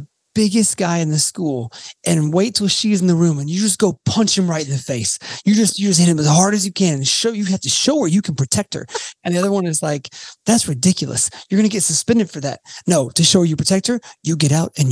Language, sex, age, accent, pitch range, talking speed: English, male, 30-49, American, 155-205 Hz, 280 wpm